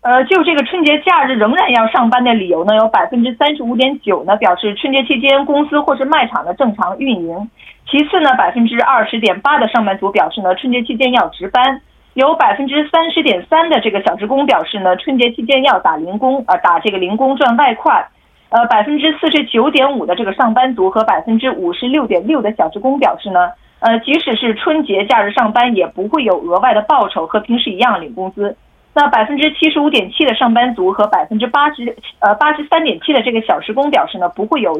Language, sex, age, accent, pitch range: Korean, female, 30-49, Chinese, 210-290 Hz